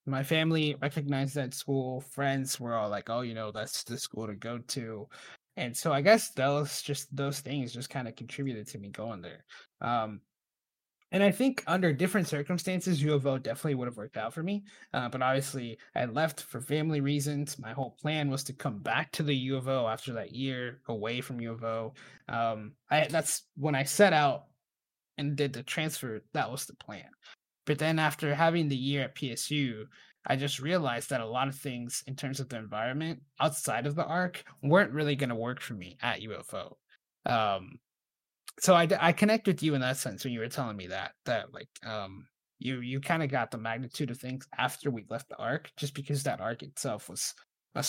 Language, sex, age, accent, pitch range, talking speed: English, male, 20-39, American, 120-150 Hz, 200 wpm